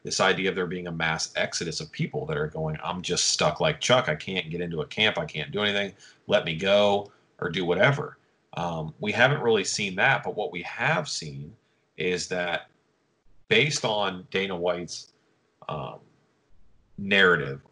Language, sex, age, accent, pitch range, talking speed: English, male, 40-59, American, 85-140 Hz, 180 wpm